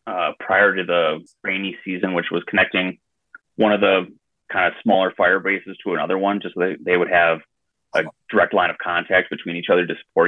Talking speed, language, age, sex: 210 wpm, English, 30-49, male